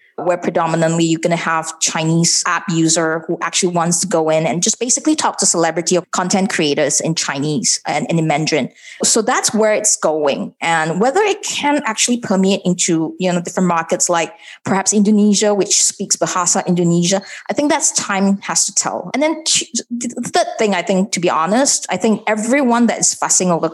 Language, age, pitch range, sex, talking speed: English, 20-39, 170-225 Hz, female, 195 wpm